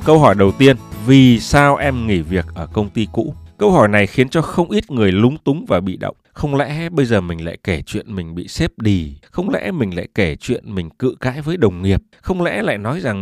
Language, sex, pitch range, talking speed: Vietnamese, male, 100-145 Hz, 250 wpm